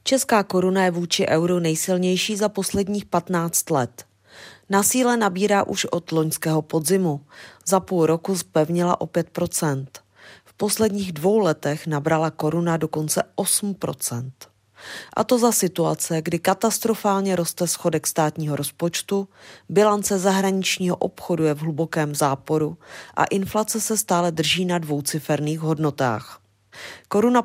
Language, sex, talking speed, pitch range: Czech, female, 120 wpm, 160-195 Hz